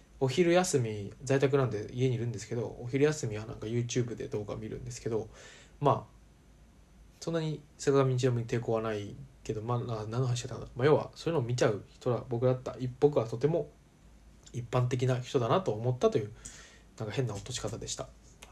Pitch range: 110-140 Hz